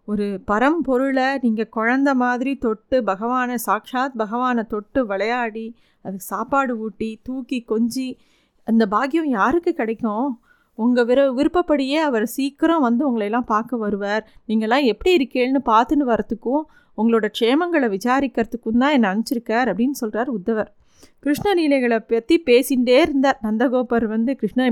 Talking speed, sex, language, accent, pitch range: 125 wpm, female, Tamil, native, 225-270 Hz